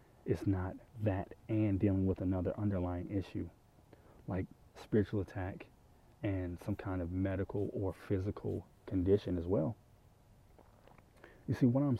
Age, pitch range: 30-49, 95-115 Hz